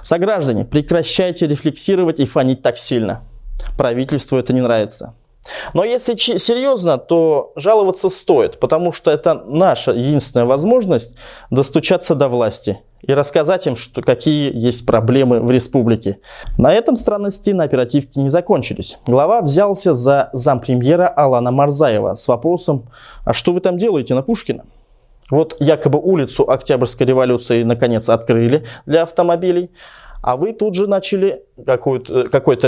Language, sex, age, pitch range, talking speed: Russian, male, 20-39, 125-180 Hz, 135 wpm